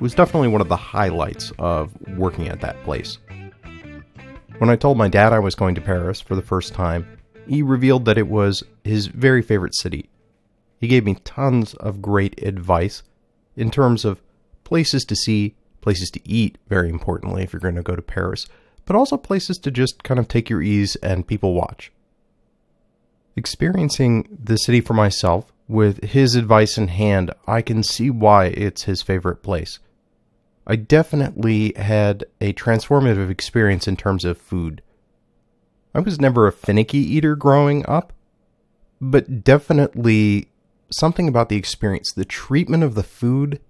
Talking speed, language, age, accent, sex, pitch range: 165 wpm, English, 30-49, American, male, 95-125 Hz